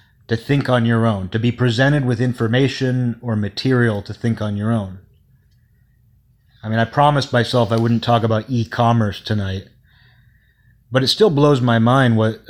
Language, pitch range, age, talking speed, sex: English, 115-135 Hz, 30-49, 170 wpm, male